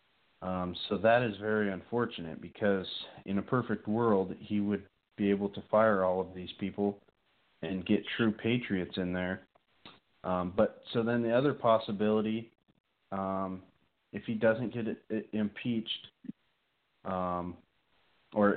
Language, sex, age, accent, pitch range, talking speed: English, male, 30-49, American, 95-115 Hz, 135 wpm